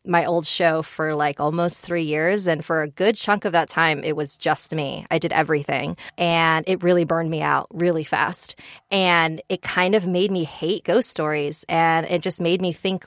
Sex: female